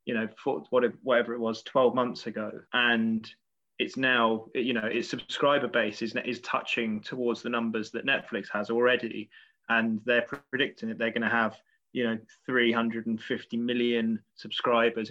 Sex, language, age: male, English, 20-39